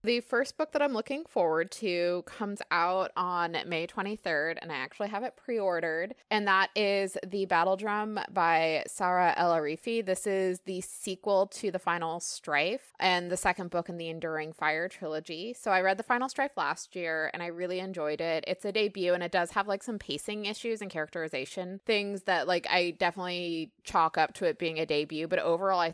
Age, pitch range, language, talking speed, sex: 20-39, 155-190 Hz, English, 200 wpm, female